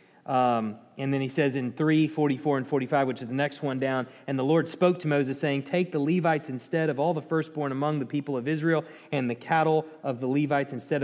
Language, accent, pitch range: English, American, 140-175 Hz